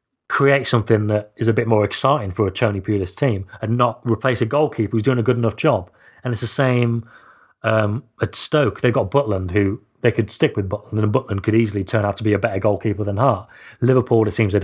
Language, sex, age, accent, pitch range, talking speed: English, male, 30-49, British, 100-120 Hz, 235 wpm